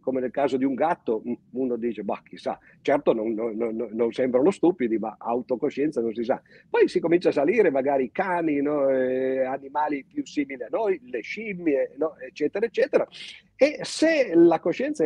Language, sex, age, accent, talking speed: Italian, male, 50-69, native, 165 wpm